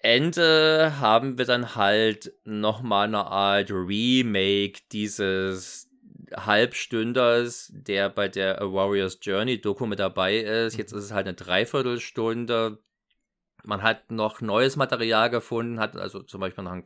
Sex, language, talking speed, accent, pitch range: male, German, 140 wpm, German, 100-120 Hz